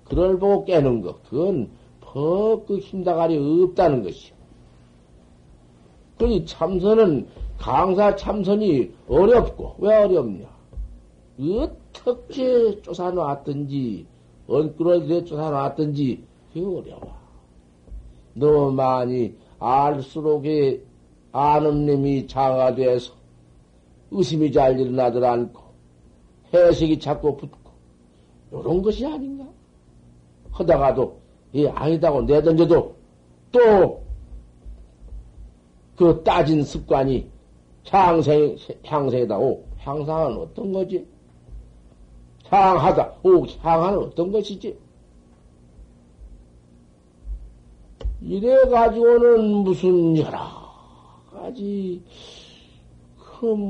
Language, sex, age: Korean, male, 60-79